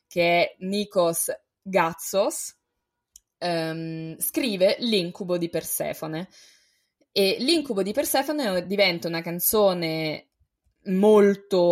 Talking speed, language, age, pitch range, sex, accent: 85 wpm, Italian, 20-39, 180-210 Hz, female, native